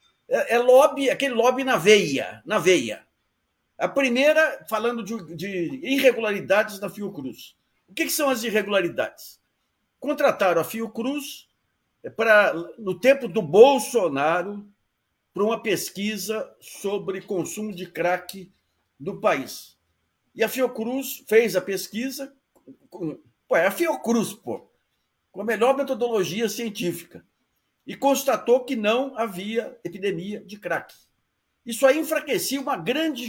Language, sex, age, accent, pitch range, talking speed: Portuguese, male, 50-69, Brazilian, 185-260 Hz, 120 wpm